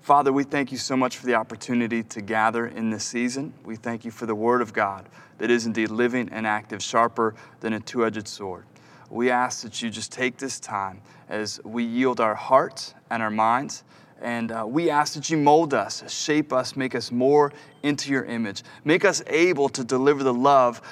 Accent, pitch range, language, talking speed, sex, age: American, 120-155 Hz, English, 205 wpm, male, 30-49